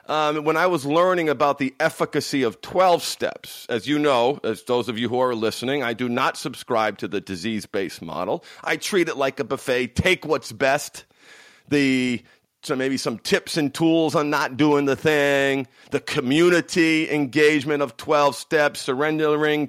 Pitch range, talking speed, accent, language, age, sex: 135-180 Hz, 170 wpm, American, English, 40-59, male